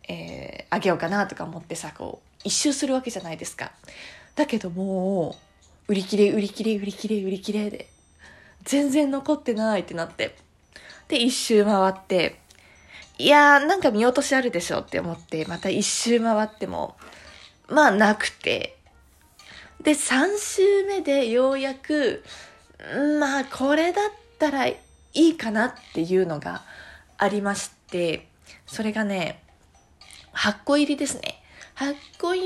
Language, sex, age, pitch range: Japanese, female, 20-39, 190-285 Hz